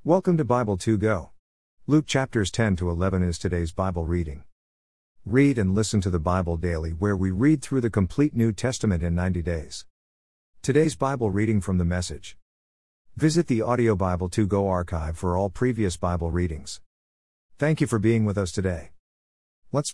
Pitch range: 75-125 Hz